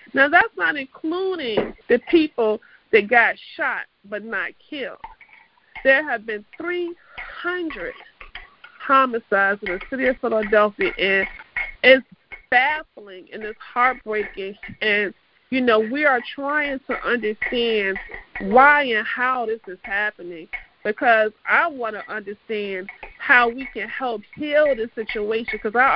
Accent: American